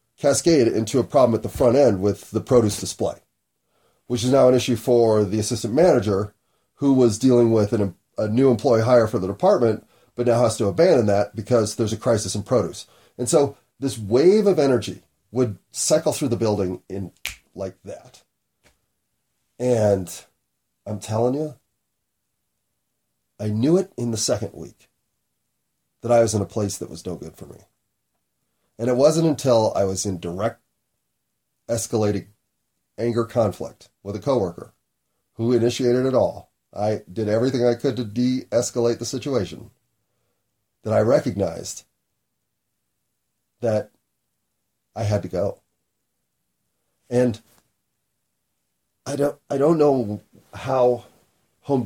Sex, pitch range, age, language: male, 100-125 Hz, 30-49, English